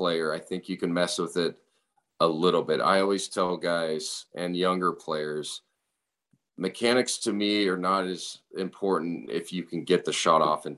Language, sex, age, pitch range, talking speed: English, male, 40-59, 80-95 Hz, 180 wpm